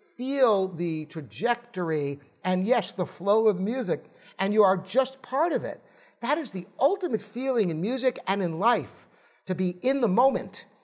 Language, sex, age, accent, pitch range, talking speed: English, male, 50-69, American, 175-240 Hz, 170 wpm